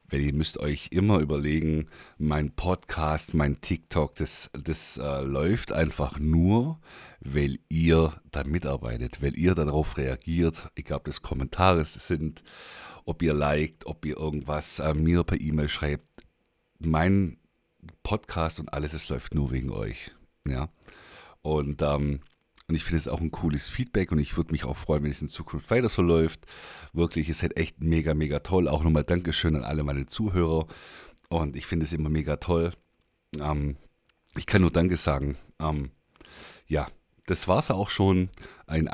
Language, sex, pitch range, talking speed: German, male, 75-85 Hz, 165 wpm